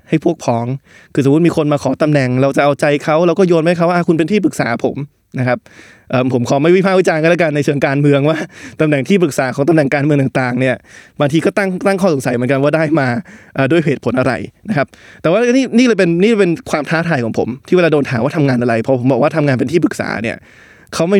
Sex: male